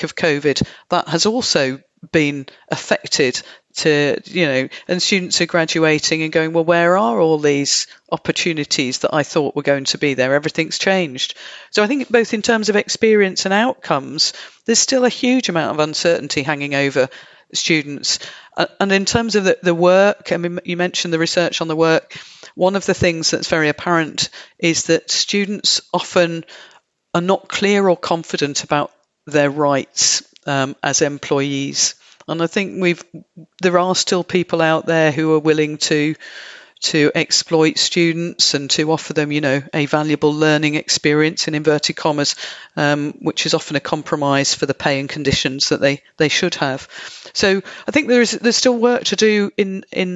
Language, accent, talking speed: English, British, 180 wpm